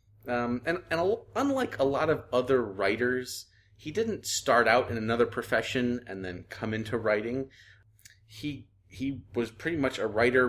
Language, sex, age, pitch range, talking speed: English, male, 30-49, 100-130 Hz, 165 wpm